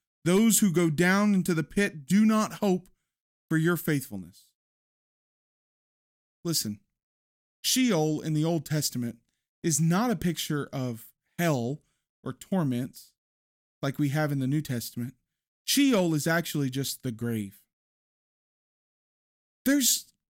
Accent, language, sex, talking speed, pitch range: American, English, male, 120 wpm, 145-185 Hz